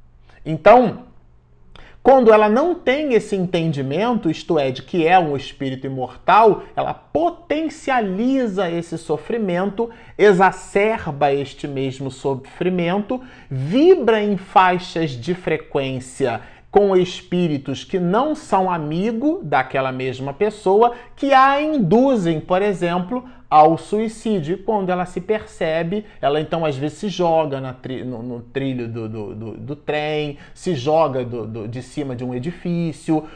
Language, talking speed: Portuguese, 135 wpm